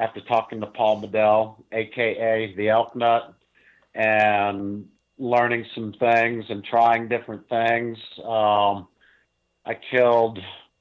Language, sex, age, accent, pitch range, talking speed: English, male, 50-69, American, 105-120 Hz, 110 wpm